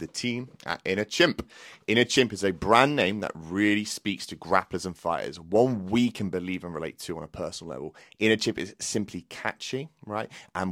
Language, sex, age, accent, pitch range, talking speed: English, male, 30-49, British, 90-115 Hz, 200 wpm